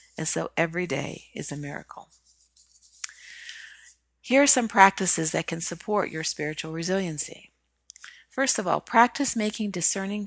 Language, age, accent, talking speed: English, 40-59, American, 135 wpm